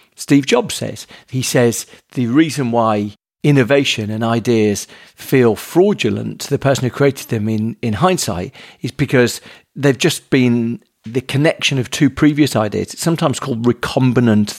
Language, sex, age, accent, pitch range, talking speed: English, male, 40-59, British, 115-145 Hz, 150 wpm